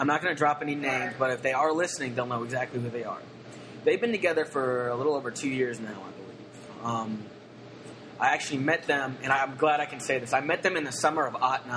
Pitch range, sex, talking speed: 125-150 Hz, male, 255 wpm